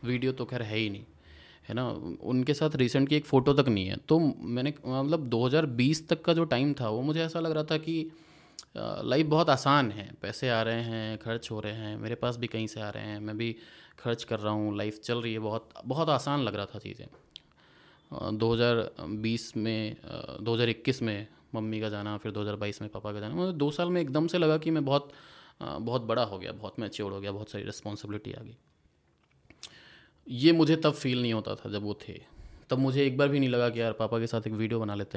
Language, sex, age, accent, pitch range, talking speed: Hindi, male, 20-39, native, 105-140 Hz, 220 wpm